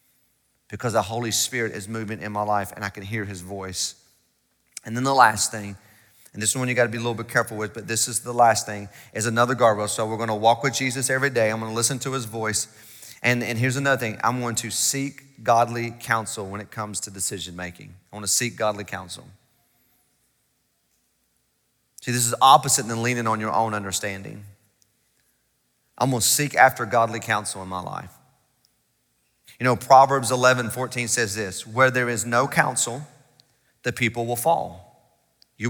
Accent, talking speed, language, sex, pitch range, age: American, 190 wpm, English, male, 110-135 Hz, 30-49